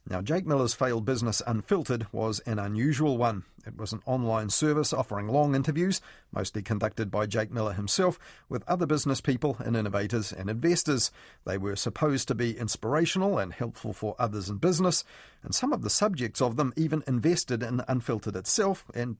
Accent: Australian